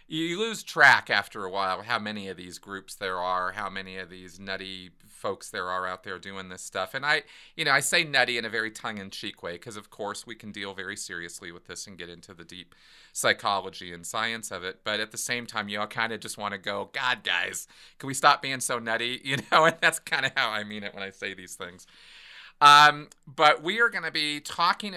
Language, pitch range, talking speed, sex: English, 100-145 Hz, 245 wpm, male